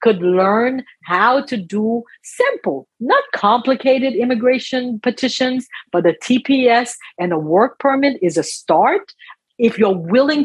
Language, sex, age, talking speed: English, female, 50-69, 130 wpm